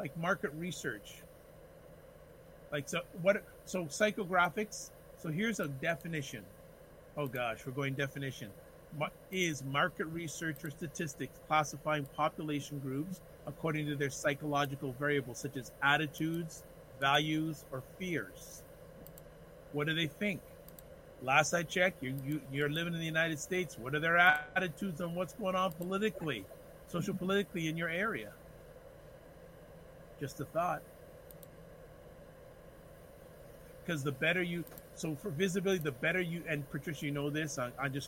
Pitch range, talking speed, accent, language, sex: 140-175 Hz, 135 wpm, American, English, male